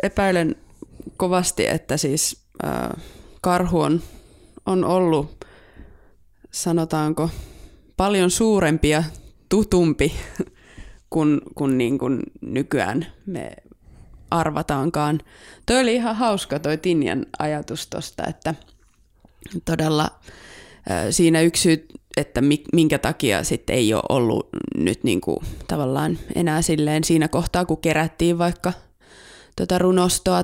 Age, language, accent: 20-39, Finnish, native